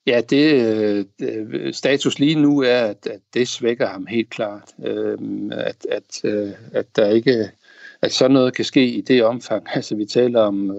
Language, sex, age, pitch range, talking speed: Danish, male, 60-79, 110-130 Hz, 170 wpm